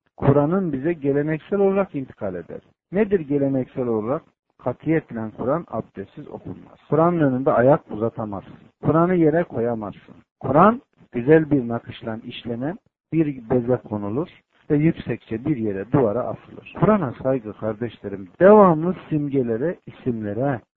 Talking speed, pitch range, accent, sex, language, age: 115 wpm, 115-165 Hz, native, male, Turkish, 50-69